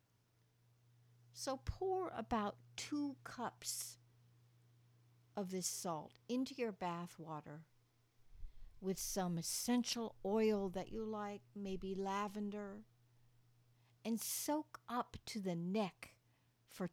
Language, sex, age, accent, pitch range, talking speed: English, female, 60-79, American, 120-200 Hz, 100 wpm